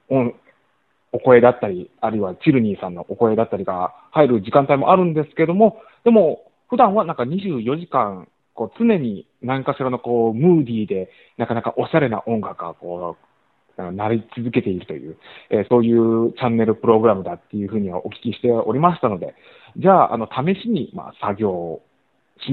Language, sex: Japanese, male